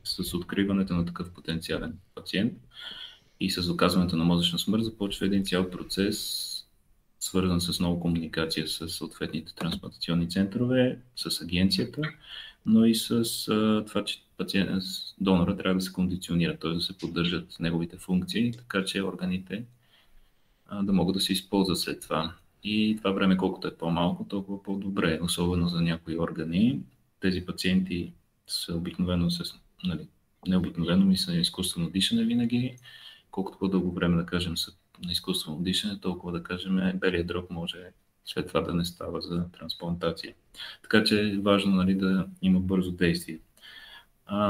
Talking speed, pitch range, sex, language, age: 150 wpm, 90-105 Hz, male, Bulgarian, 30-49